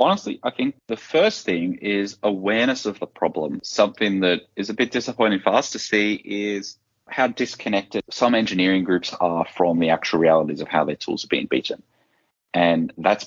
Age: 30-49